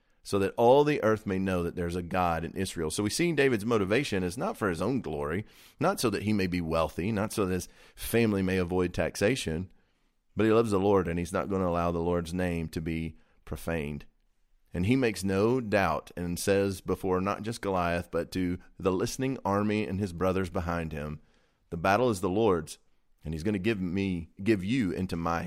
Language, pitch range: English, 85-105 Hz